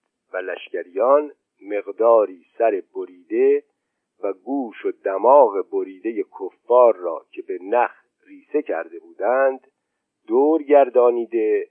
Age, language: 50-69, Persian